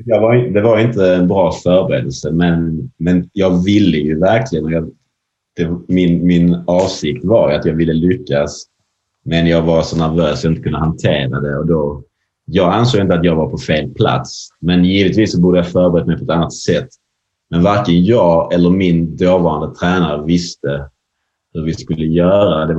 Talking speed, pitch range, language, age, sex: 180 wpm, 80-95 Hz, English, 30-49, male